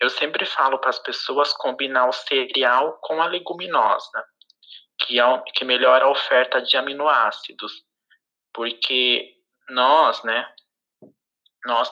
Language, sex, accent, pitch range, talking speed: Portuguese, male, Brazilian, 145-195 Hz, 125 wpm